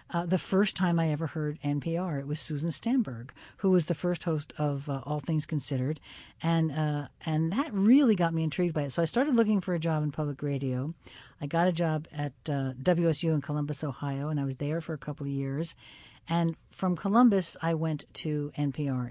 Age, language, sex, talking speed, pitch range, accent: 50-69, English, female, 220 wpm, 145-175 Hz, American